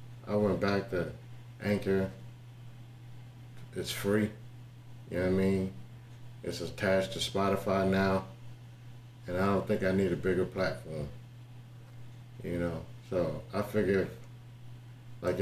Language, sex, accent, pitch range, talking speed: English, male, American, 100-120 Hz, 125 wpm